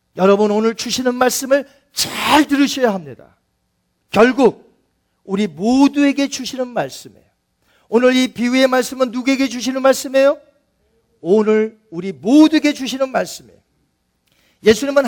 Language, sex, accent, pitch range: Korean, male, native, 190-260 Hz